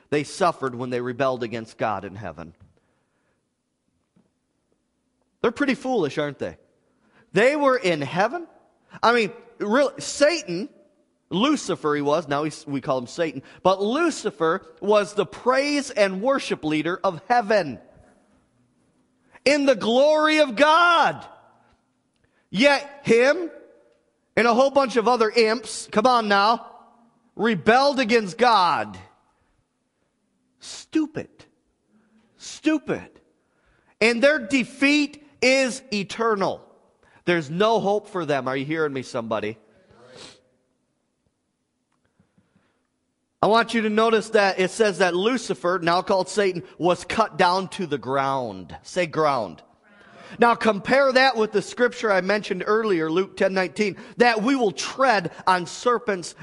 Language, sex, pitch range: English, male, 170-245 Hz